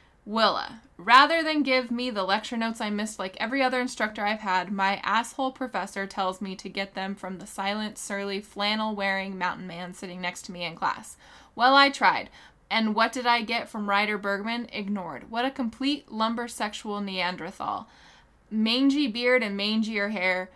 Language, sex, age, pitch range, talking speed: English, female, 10-29, 195-235 Hz, 170 wpm